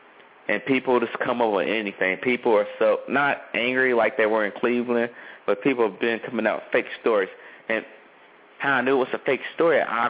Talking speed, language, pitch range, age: 215 wpm, English, 105-125 Hz, 30-49